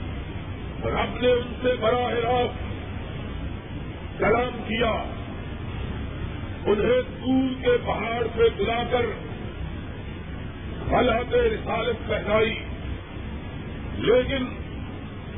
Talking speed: 80 wpm